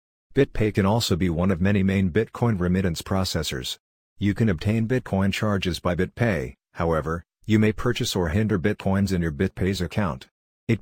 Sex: male